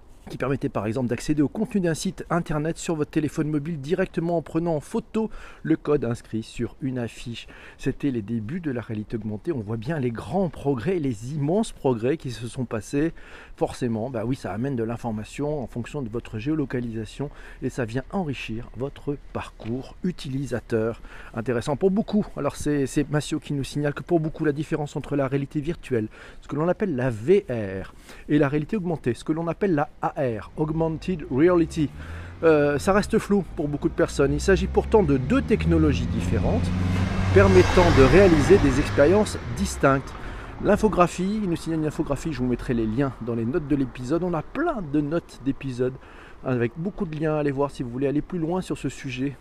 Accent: French